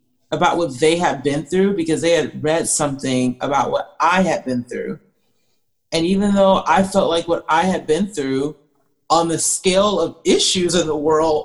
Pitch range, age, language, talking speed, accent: 165-225 Hz, 30-49, English, 190 wpm, American